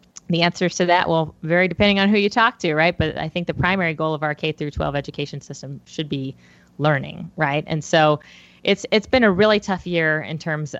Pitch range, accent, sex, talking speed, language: 145-180 Hz, American, female, 220 wpm, English